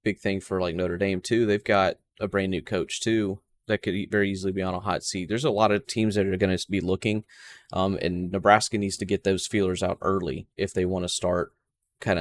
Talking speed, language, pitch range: 245 wpm, English, 90-105 Hz